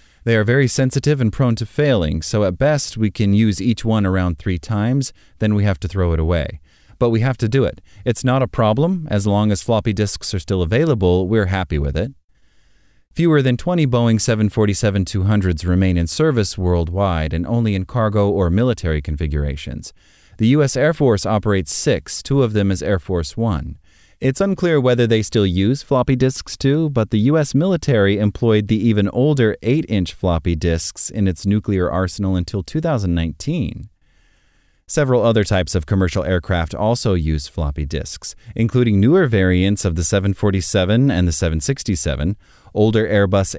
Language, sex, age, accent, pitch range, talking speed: English, male, 30-49, American, 90-120 Hz, 170 wpm